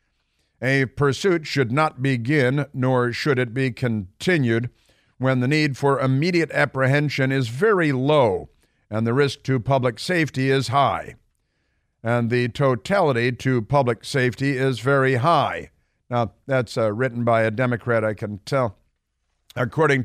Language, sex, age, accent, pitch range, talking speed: English, male, 50-69, American, 115-145 Hz, 140 wpm